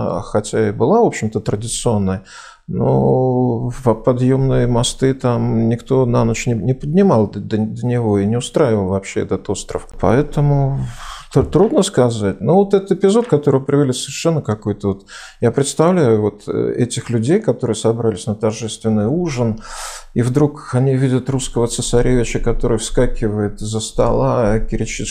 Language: Russian